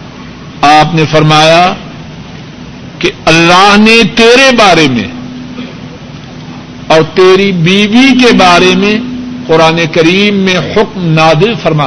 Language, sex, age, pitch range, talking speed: Urdu, male, 60-79, 160-205 Hz, 110 wpm